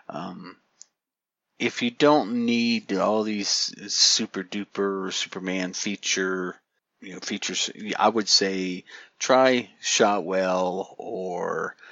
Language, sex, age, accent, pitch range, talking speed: English, male, 50-69, American, 95-130 Hz, 100 wpm